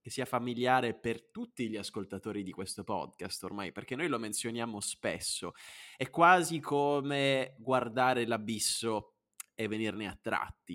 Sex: male